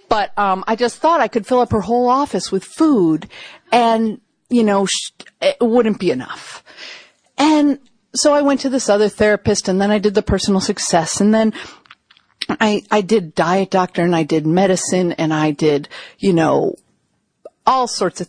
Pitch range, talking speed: 165-220 Hz, 180 wpm